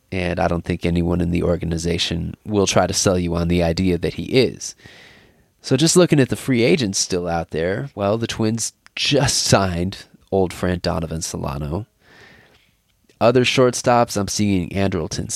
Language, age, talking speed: English, 20-39, 170 wpm